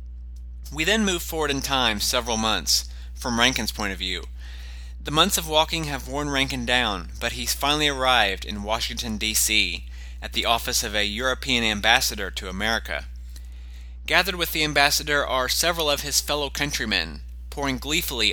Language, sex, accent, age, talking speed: English, male, American, 30-49, 160 wpm